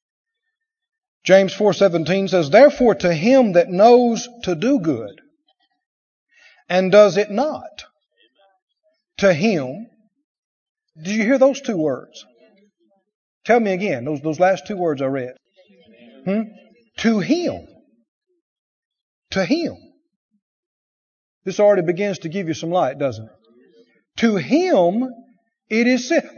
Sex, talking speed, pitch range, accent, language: male, 125 wpm, 205-315 Hz, American, English